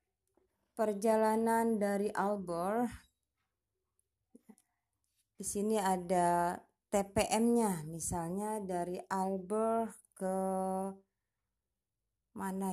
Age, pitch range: 30-49, 175-225 Hz